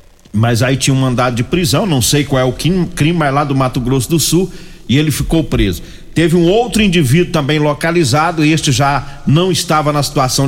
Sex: male